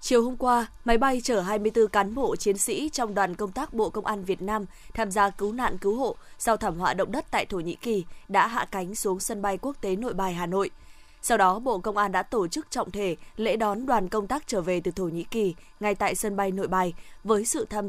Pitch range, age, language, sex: 200-240 Hz, 20-39, Vietnamese, female